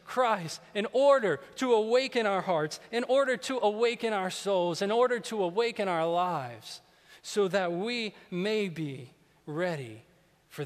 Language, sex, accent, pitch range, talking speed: English, male, American, 145-200 Hz, 145 wpm